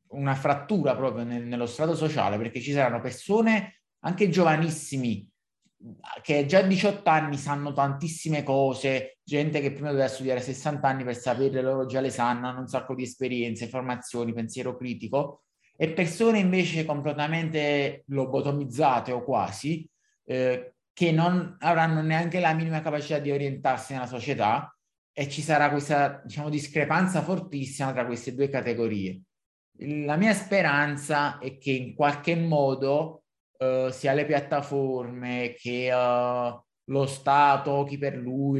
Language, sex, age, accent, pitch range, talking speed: Italian, male, 30-49, native, 125-150 Hz, 145 wpm